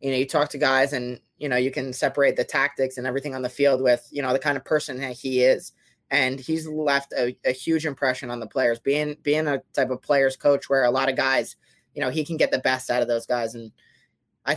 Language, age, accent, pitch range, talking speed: English, 20-39, American, 125-145 Hz, 265 wpm